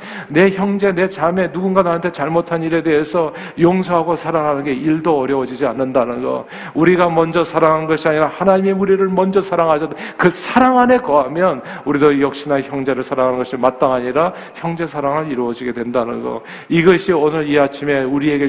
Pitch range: 135-170 Hz